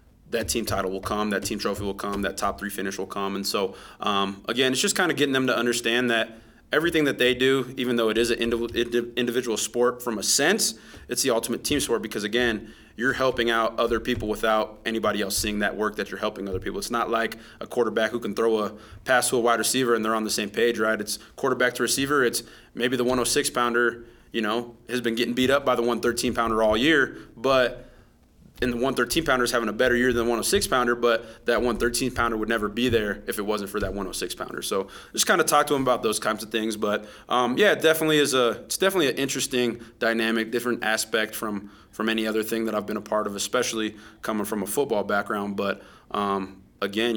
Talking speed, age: 235 wpm, 20-39